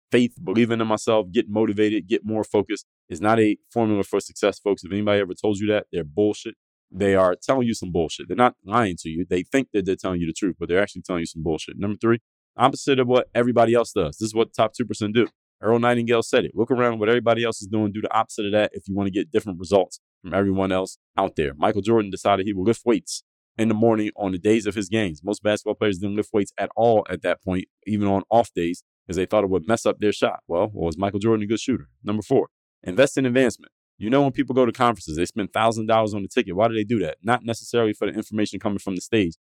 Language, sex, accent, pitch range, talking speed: English, male, American, 95-115 Hz, 265 wpm